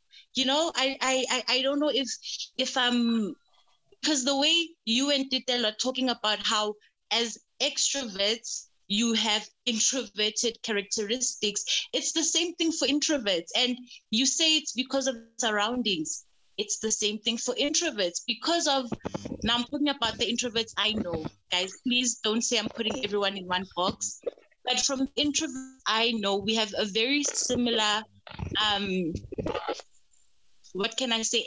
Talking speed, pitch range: 155 wpm, 215-265 Hz